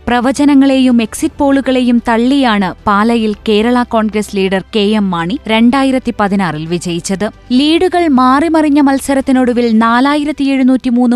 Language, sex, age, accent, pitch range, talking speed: Malayalam, female, 20-39, native, 210-265 Hz, 100 wpm